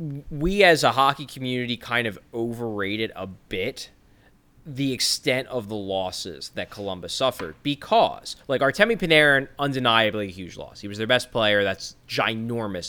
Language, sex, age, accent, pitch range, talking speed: English, male, 20-39, American, 110-160 Hz, 155 wpm